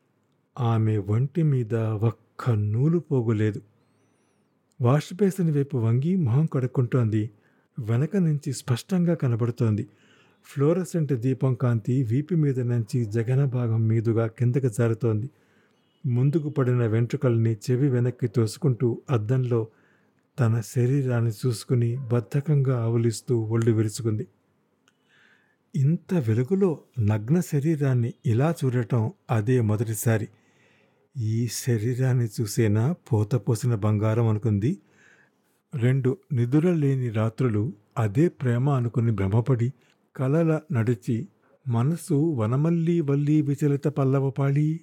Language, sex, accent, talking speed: Telugu, male, native, 95 wpm